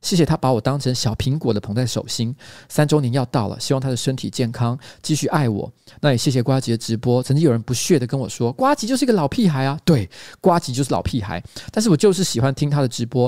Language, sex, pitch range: Chinese, male, 120-155 Hz